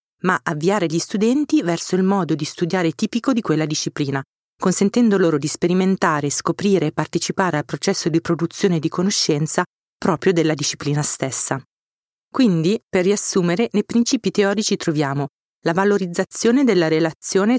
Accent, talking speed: native, 140 wpm